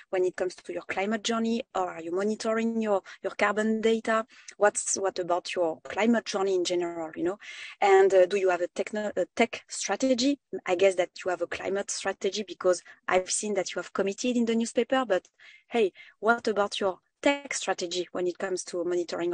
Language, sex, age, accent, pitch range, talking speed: English, female, 20-39, French, 185-230 Hz, 200 wpm